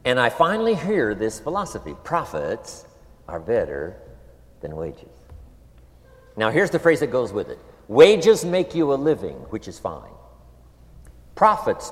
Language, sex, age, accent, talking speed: English, male, 60-79, American, 140 wpm